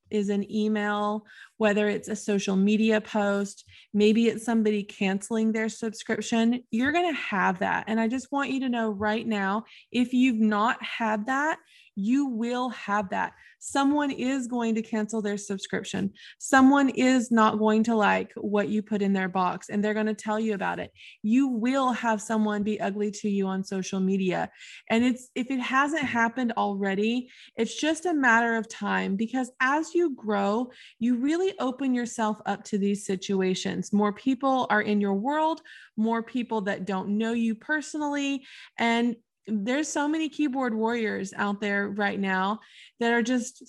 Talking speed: 175 wpm